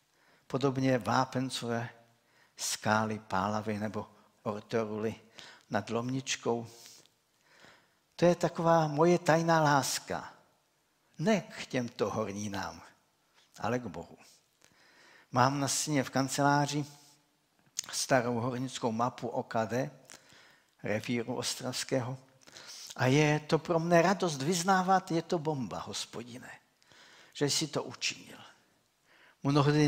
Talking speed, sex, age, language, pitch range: 95 wpm, male, 60-79, Czech, 115-155 Hz